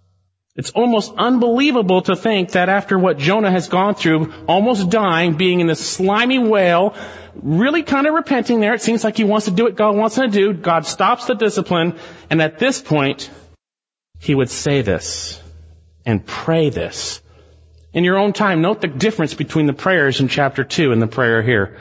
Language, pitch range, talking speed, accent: English, 120-195 Hz, 185 wpm, American